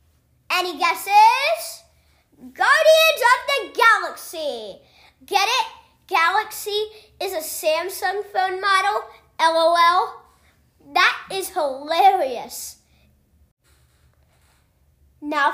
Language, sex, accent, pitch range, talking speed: English, female, American, 285-415 Hz, 75 wpm